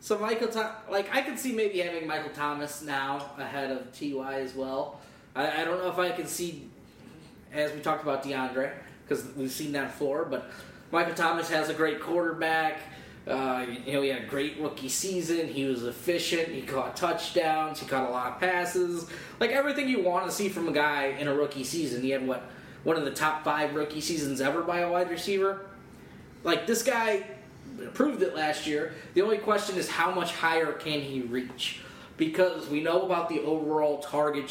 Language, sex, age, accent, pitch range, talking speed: English, male, 20-39, American, 135-170 Hz, 200 wpm